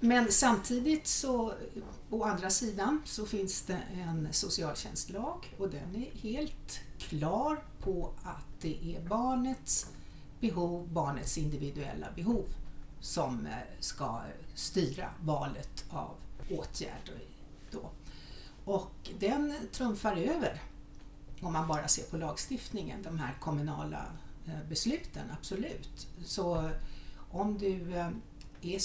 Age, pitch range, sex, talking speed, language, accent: 60-79, 165-240 Hz, female, 105 wpm, Swedish, native